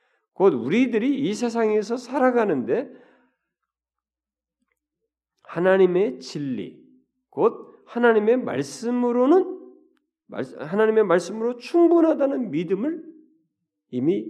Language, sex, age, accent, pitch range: Korean, male, 40-59, native, 200-310 Hz